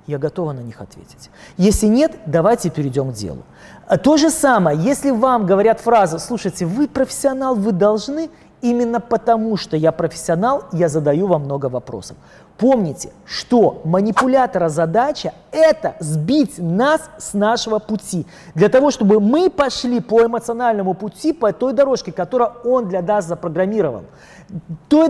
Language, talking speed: Russian, 145 wpm